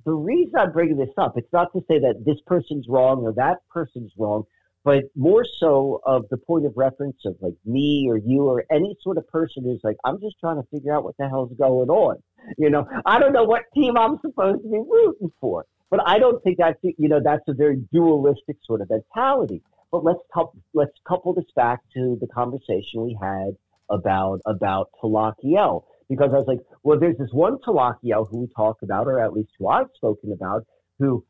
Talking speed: 215 wpm